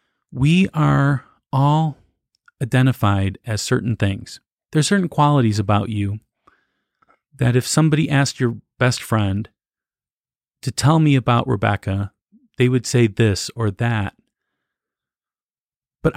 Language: English